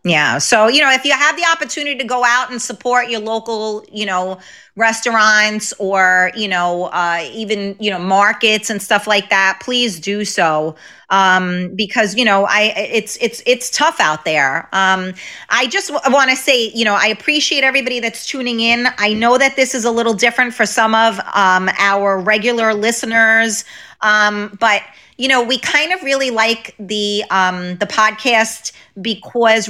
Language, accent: English, American